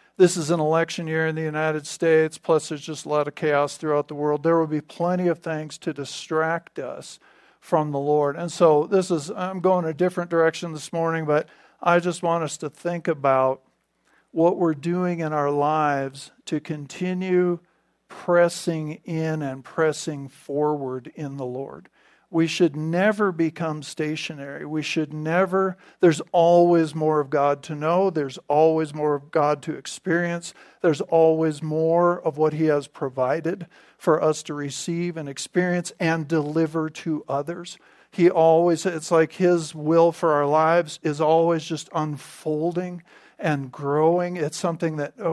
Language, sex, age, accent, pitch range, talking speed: English, male, 50-69, American, 150-175 Hz, 165 wpm